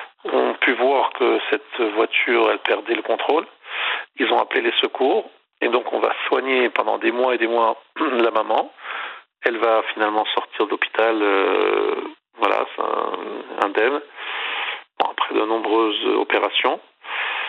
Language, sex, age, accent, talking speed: French, male, 40-59, French, 145 wpm